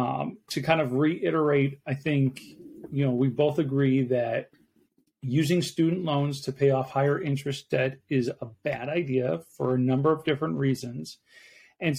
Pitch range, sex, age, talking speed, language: 130-155 Hz, male, 40-59, 165 wpm, English